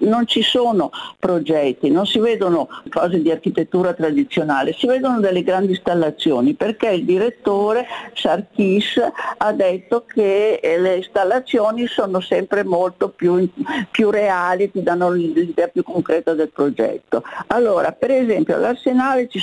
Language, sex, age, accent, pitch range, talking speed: Italian, female, 50-69, native, 185-250 Hz, 135 wpm